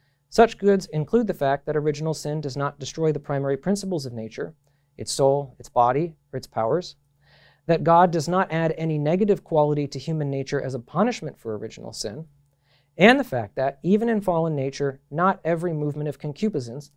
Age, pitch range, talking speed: 40-59, 140-190 Hz, 185 wpm